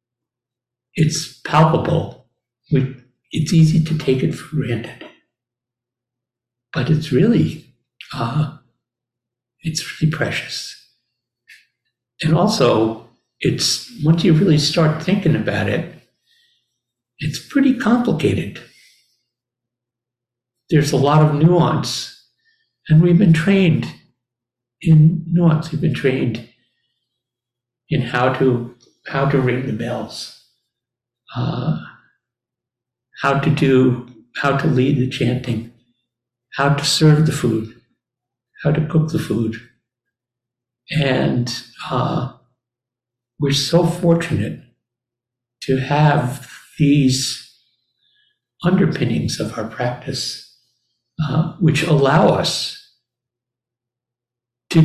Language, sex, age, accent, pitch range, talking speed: English, male, 60-79, American, 120-155 Hz, 95 wpm